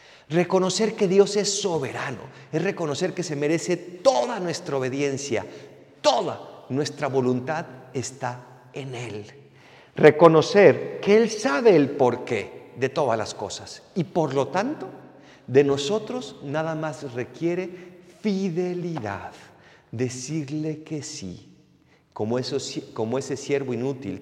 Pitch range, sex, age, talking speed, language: 135-210 Hz, male, 50-69, 115 wpm, Spanish